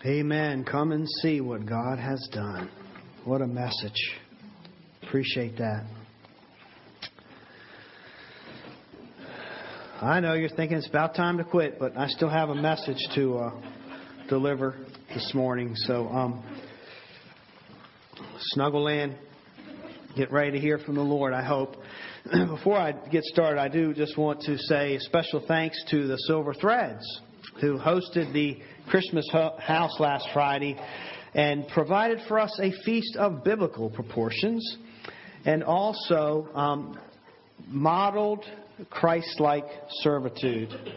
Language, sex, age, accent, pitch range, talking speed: English, male, 40-59, American, 130-160 Hz, 125 wpm